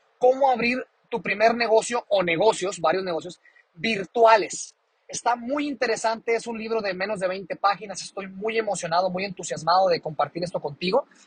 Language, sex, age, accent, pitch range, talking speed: Spanish, male, 30-49, Mexican, 170-215 Hz, 160 wpm